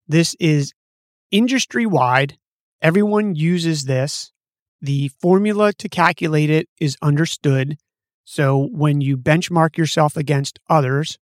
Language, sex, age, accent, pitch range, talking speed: English, male, 30-49, American, 140-175 Hz, 105 wpm